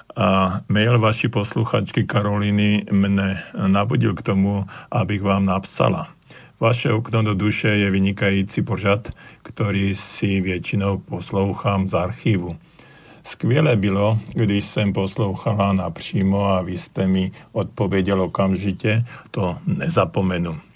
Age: 50-69